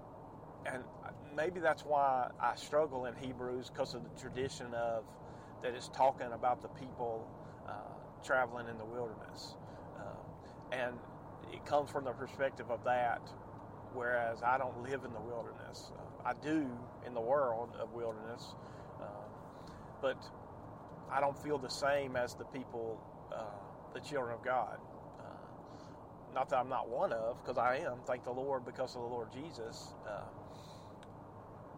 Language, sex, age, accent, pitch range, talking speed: English, male, 40-59, American, 120-145 Hz, 155 wpm